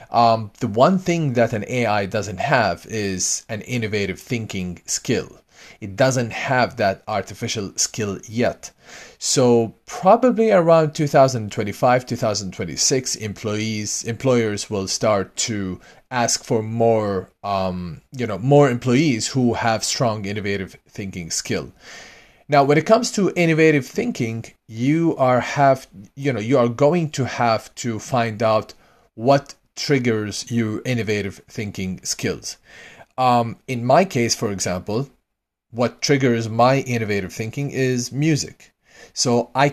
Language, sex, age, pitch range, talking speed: English, male, 30-49, 105-130 Hz, 140 wpm